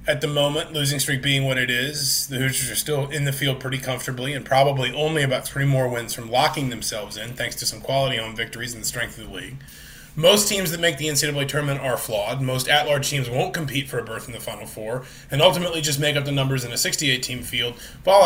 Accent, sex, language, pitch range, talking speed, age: American, male, English, 130-155 Hz, 245 wpm, 30-49